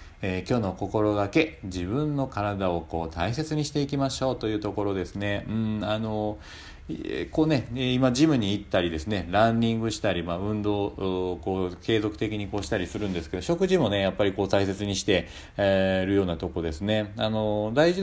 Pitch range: 90-120 Hz